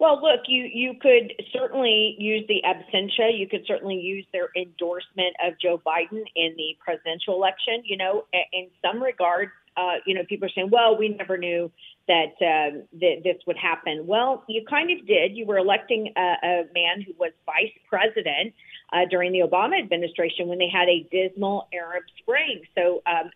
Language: English